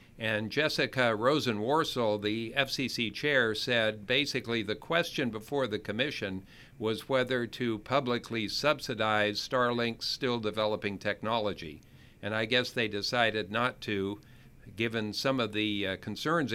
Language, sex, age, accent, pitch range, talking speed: English, male, 50-69, American, 105-130 Hz, 125 wpm